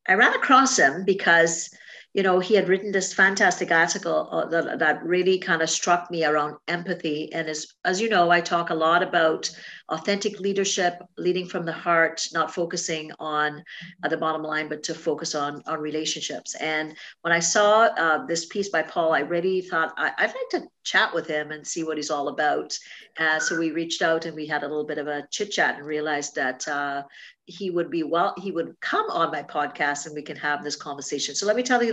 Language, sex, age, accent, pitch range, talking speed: English, female, 50-69, American, 155-185 Hz, 220 wpm